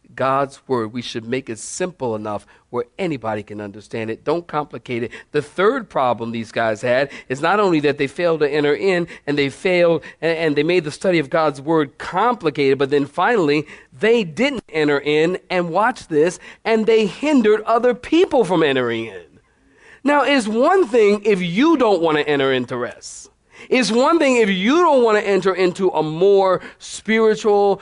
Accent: American